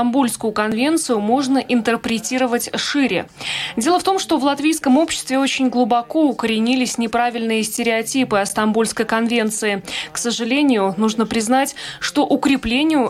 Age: 20-39